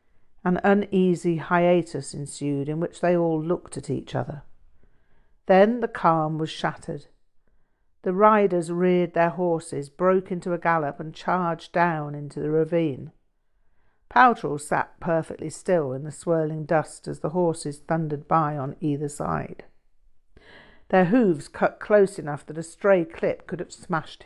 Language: English